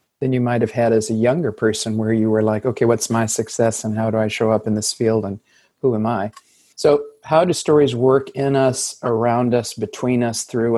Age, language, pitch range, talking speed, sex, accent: 50-69, English, 110-130 Hz, 230 wpm, male, American